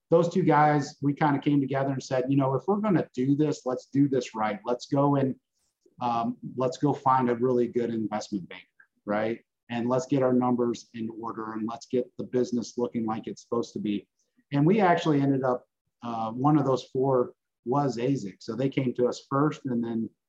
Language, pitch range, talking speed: English, 115-140 Hz, 215 wpm